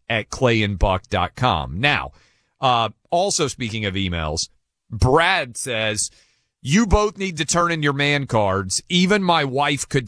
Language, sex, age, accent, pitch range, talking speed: English, male, 40-59, American, 120-180 Hz, 135 wpm